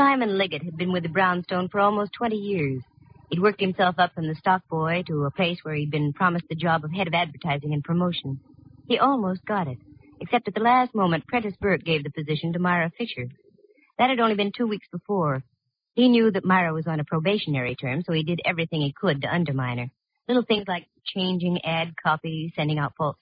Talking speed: 220 wpm